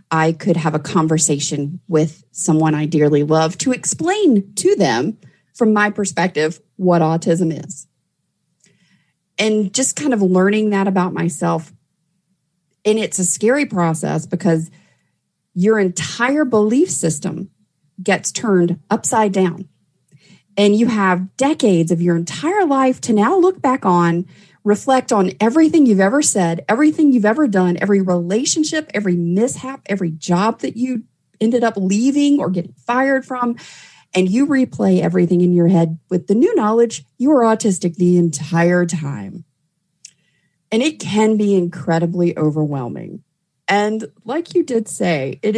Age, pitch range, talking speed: 40-59, 170-220 Hz, 145 wpm